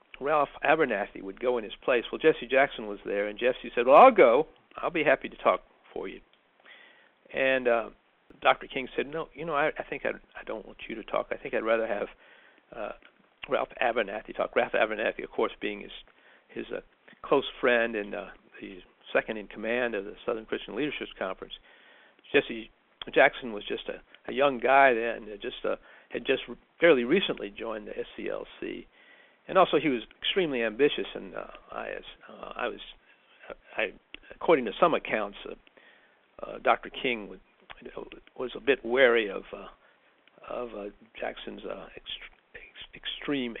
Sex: male